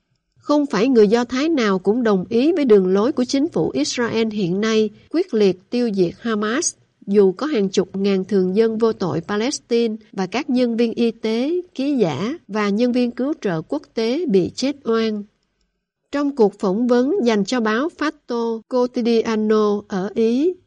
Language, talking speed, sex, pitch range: Vietnamese, 180 wpm, female, 200-250 Hz